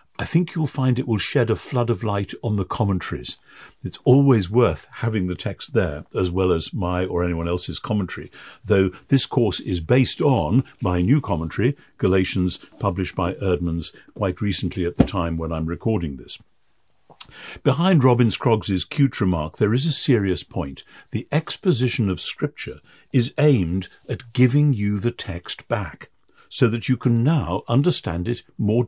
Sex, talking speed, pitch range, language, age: male, 170 wpm, 90-130 Hz, English, 60-79